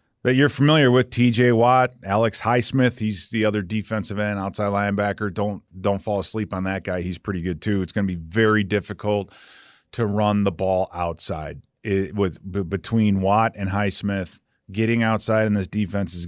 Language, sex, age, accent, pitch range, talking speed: English, male, 30-49, American, 95-110 Hz, 185 wpm